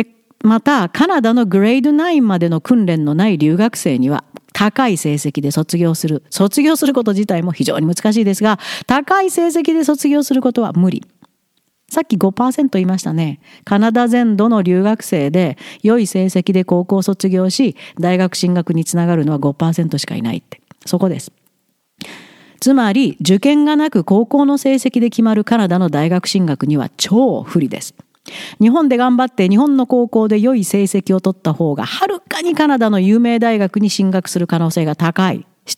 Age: 40-59